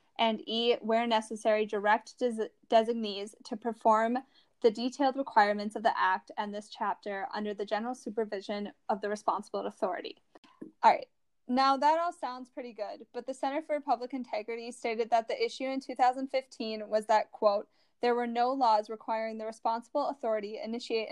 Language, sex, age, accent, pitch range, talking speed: English, female, 10-29, American, 215-260 Hz, 165 wpm